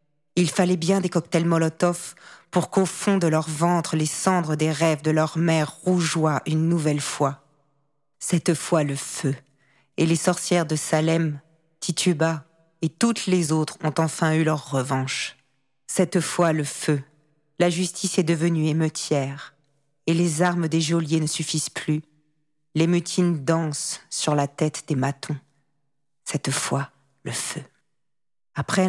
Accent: French